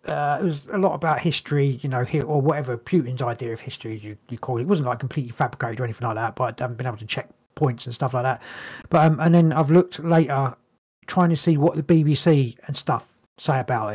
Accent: British